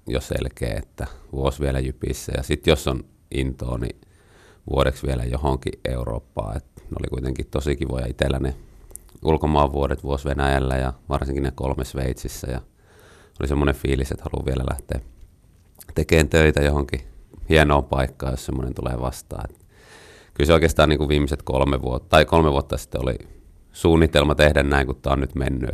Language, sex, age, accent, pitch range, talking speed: Finnish, male, 30-49, native, 65-80 Hz, 165 wpm